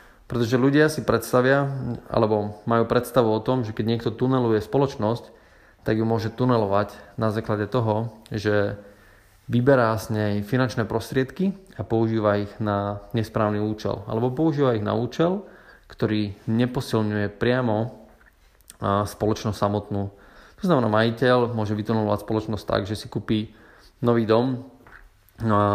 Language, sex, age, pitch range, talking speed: Slovak, male, 20-39, 105-125 Hz, 130 wpm